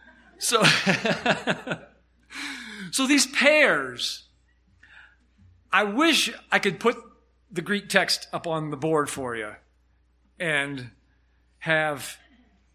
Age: 40-59